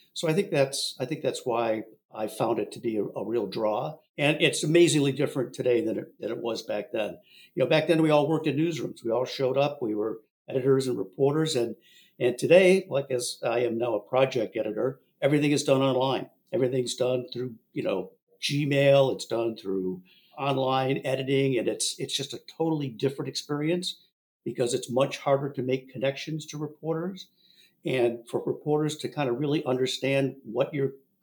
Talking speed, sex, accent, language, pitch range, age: 190 wpm, male, American, English, 130-160 Hz, 50-69